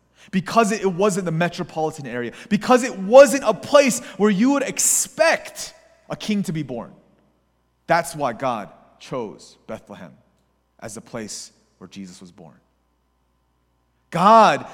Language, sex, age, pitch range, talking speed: English, male, 30-49, 170-230 Hz, 135 wpm